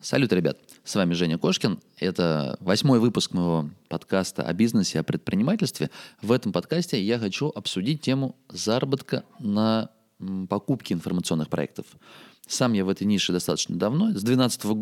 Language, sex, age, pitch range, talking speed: Russian, male, 20-39, 90-120 Hz, 150 wpm